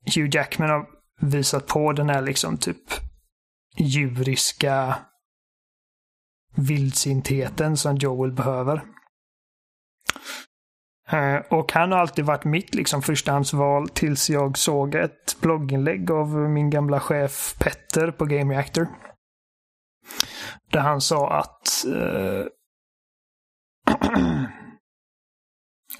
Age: 30-49